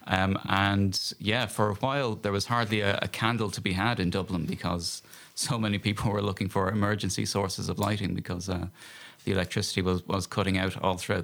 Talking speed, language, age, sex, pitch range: 205 wpm, English, 30-49, male, 95-110 Hz